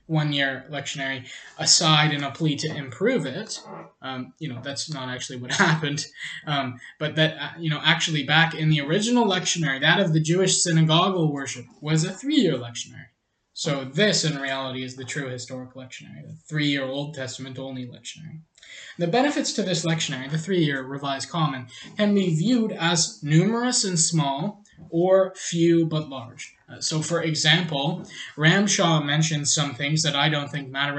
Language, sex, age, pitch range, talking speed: English, male, 20-39, 135-165 Hz, 165 wpm